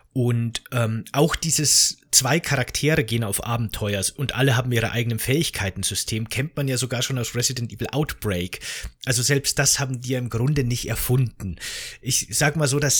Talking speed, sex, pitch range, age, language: 180 wpm, male, 115-145 Hz, 30-49, German